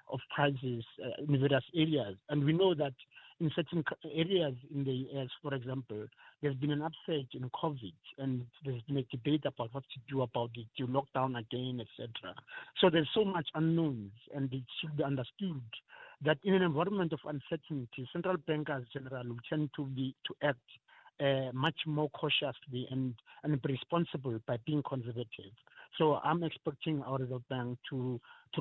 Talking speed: 175 wpm